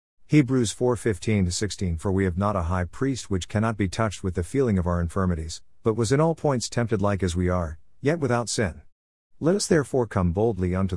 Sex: male